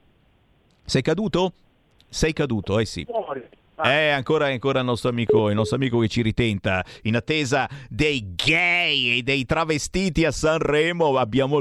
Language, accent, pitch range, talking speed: Italian, native, 105-150 Hz, 145 wpm